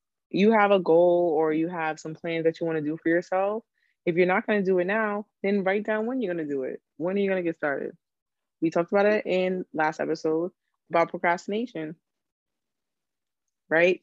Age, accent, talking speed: 20-39, American, 215 wpm